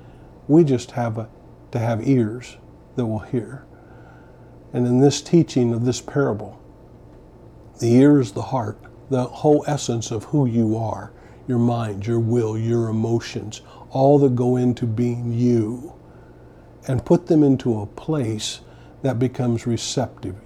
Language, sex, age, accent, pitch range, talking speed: English, male, 50-69, American, 110-135 Hz, 145 wpm